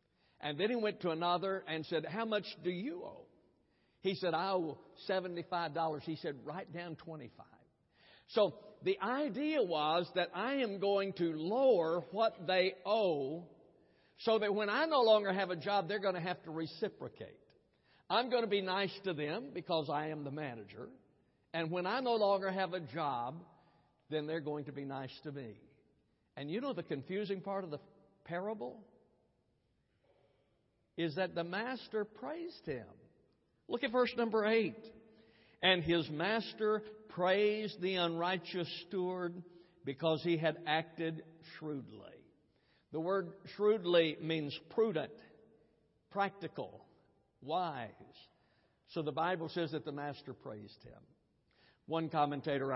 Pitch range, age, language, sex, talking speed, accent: 150-195 Hz, 60-79, English, male, 145 wpm, American